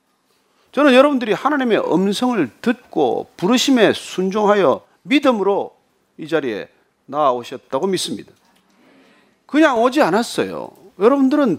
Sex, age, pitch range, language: male, 40-59, 200-285 Hz, Korean